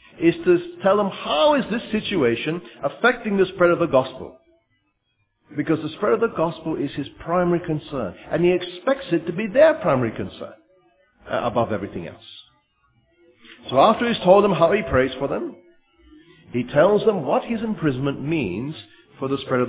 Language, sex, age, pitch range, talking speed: English, male, 50-69, 135-210 Hz, 175 wpm